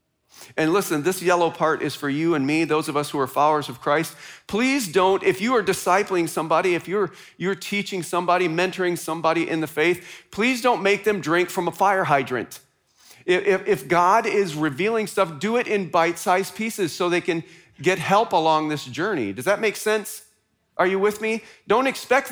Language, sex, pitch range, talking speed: English, male, 155-205 Hz, 195 wpm